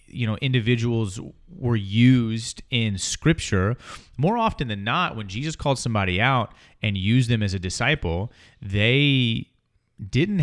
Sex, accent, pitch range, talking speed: male, American, 100-125 Hz, 140 wpm